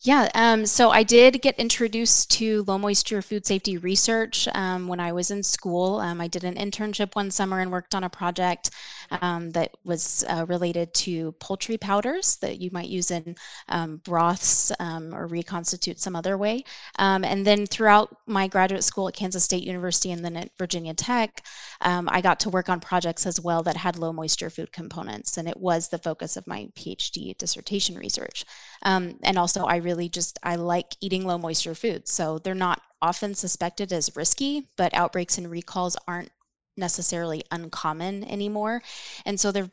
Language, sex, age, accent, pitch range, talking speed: English, female, 20-39, American, 170-205 Hz, 185 wpm